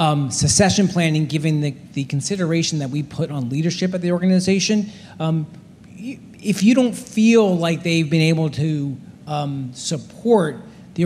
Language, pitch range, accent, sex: English, 145-175 Hz, American, male